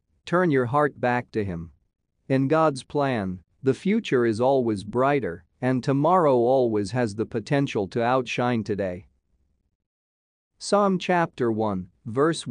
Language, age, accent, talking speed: English, 40-59, American, 130 wpm